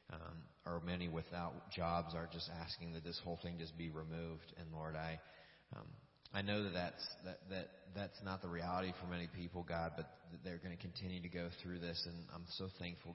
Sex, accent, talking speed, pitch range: male, American, 210 wpm, 80-90 Hz